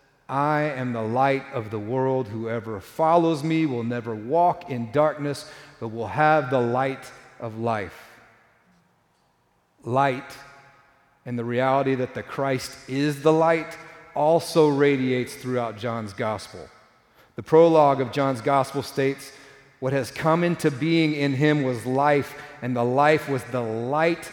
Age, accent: 40-59, American